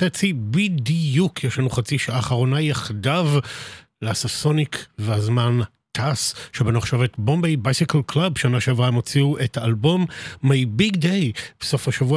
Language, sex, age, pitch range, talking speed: Hebrew, male, 50-69, 120-155 Hz, 130 wpm